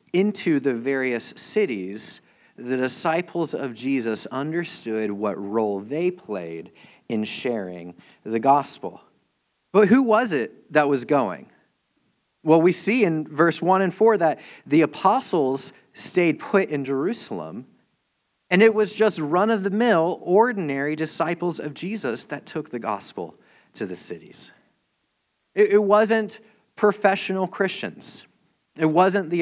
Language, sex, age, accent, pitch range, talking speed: English, male, 40-59, American, 135-190 Hz, 125 wpm